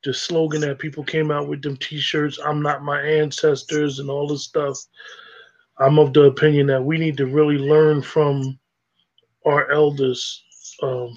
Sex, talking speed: male, 165 wpm